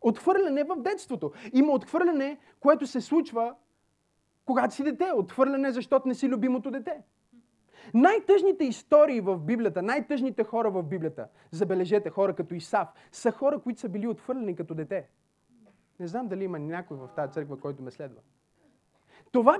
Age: 30-49